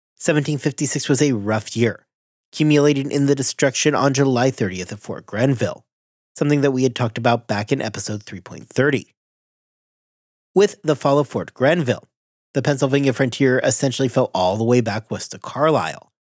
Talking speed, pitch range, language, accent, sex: 160 wpm, 115-150 Hz, English, American, male